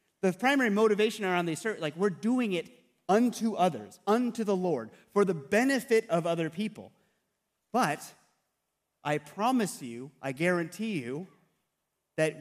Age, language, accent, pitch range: 30-49, English, American, 160-235 Hz